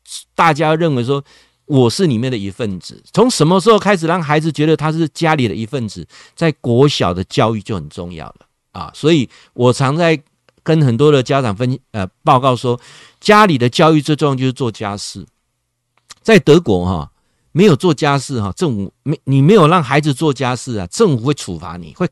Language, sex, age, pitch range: Chinese, male, 50-69, 115-160 Hz